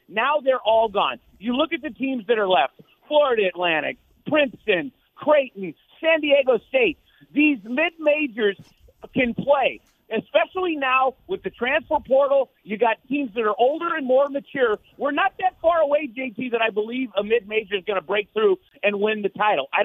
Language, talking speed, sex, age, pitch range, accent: English, 180 wpm, male, 40-59, 205-270 Hz, American